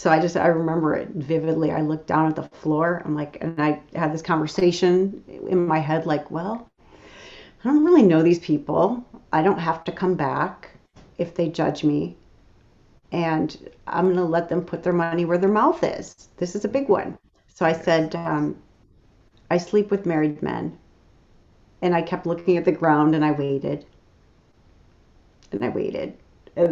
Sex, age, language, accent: female, 40-59, English, American